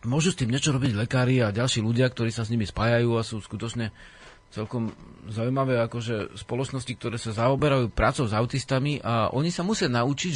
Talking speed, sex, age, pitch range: 190 wpm, male, 40-59, 115-155 Hz